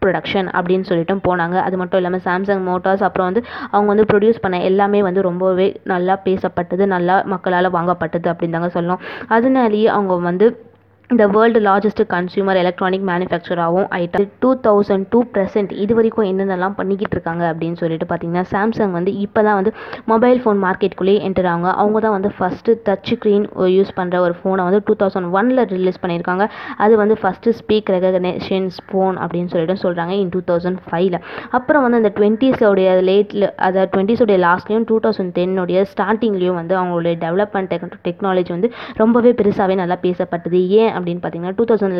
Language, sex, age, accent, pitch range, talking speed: Tamil, female, 20-39, native, 180-210 Hz, 155 wpm